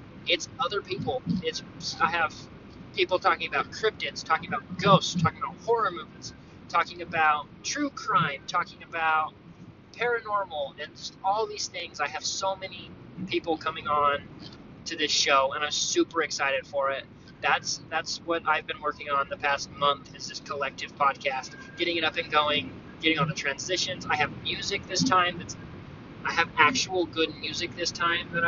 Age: 20-39